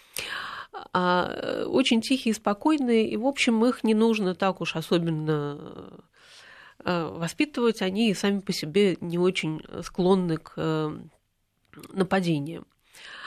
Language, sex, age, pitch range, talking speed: Russian, female, 30-49, 170-225 Hz, 105 wpm